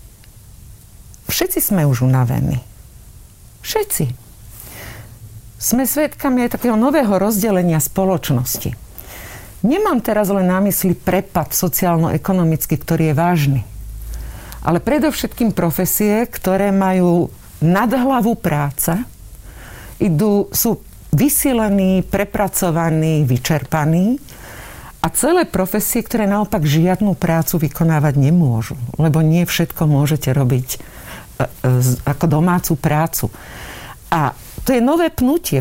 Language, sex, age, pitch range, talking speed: Slovak, female, 50-69, 145-210 Hz, 95 wpm